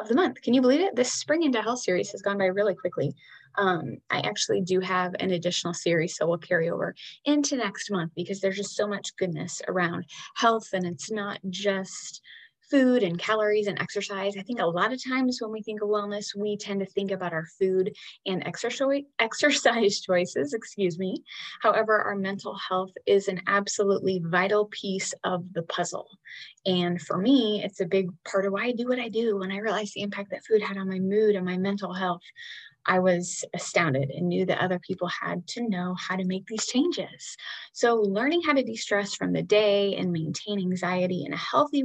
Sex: female